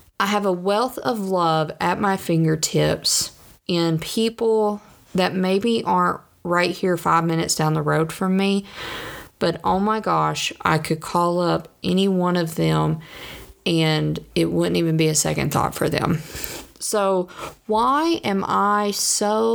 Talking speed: 155 wpm